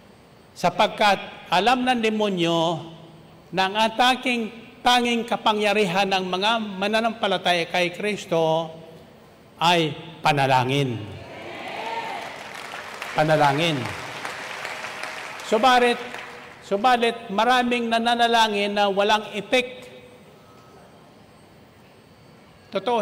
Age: 60-79